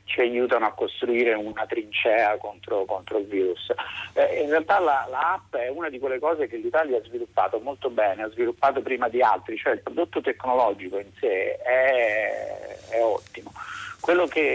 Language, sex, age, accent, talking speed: Italian, male, 50-69, native, 175 wpm